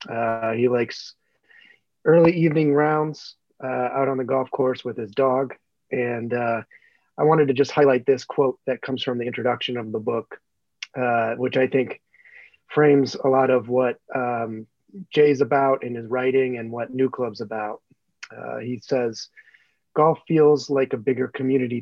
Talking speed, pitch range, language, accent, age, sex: 170 wpm, 120-140 Hz, English, American, 30-49, male